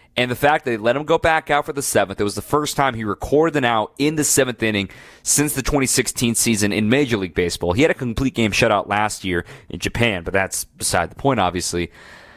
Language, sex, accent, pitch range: English, male, American, 110-135 Hz